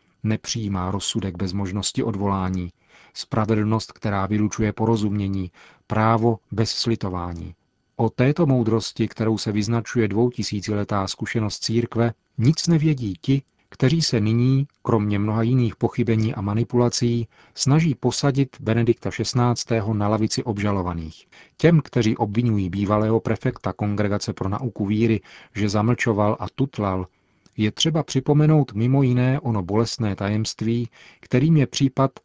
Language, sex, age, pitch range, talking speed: Czech, male, 40-59, 100-120 Hz, 120 wpm